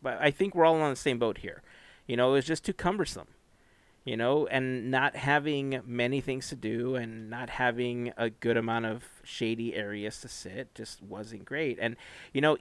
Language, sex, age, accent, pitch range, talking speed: English, male, 30-49, American, 120-140 Hz, 200 wpm